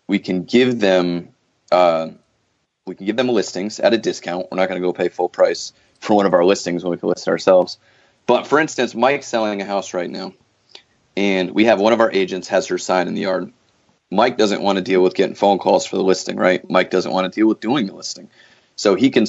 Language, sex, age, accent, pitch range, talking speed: English, male, 30-49, American, 90-105 Hz, 245 wpm